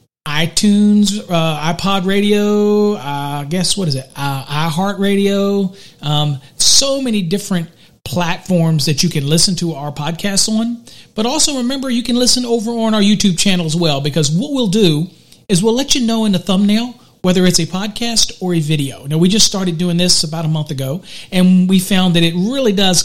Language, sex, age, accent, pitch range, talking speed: English, male, 40-59, American, 160-200 Hz, 195 wpm